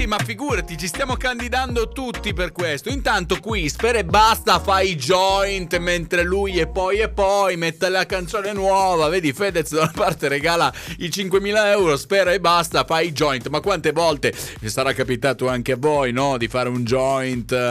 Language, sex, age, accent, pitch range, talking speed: Italian, male, 30-49, native, 145-200 Hz, 185 wpm